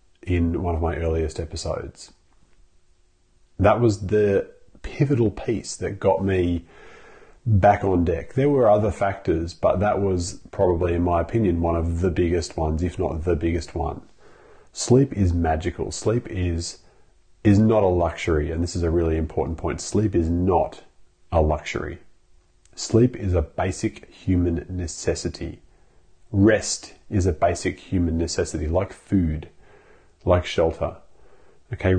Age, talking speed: 30-49, 145 wpm